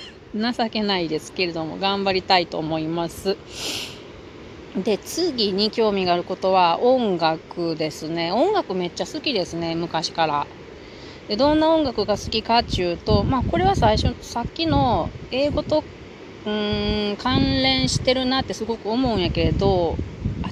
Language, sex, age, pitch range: Japanese, female, 30-49, 185-240 Hz